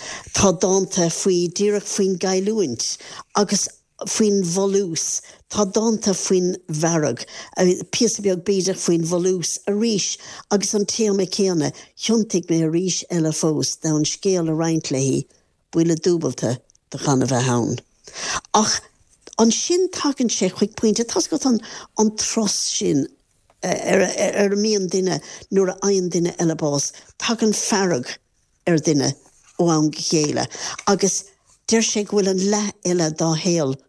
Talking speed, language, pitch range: 125 wpm, English, 160-200 Hz